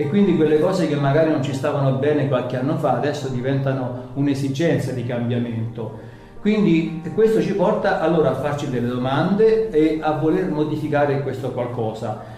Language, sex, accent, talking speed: Italian, male, native, 160 wpm